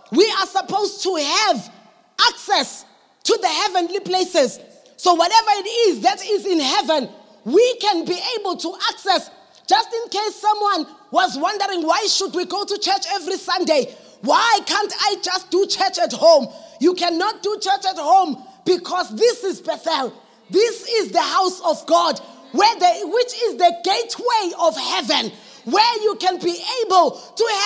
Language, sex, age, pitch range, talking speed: English, female, 20-39, 340-415 Hz, 165 wpm